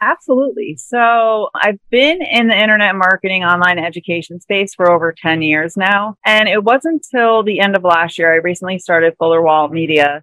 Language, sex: English, female